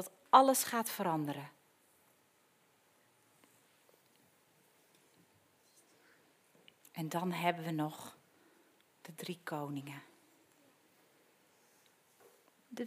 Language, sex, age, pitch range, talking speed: Dutch, female, 40-59, 205-310 Hz, 55 wpm